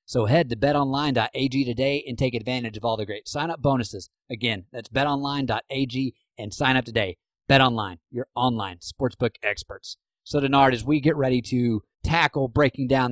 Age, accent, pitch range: 30-49, American, 120-145 Hz